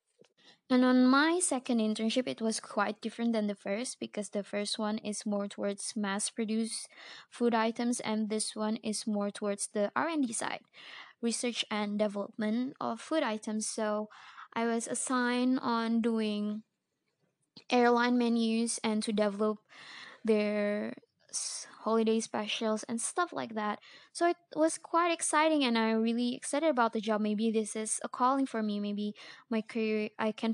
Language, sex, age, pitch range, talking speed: Indonesian, female, 20-39, 210-245 Hz, 155 wpm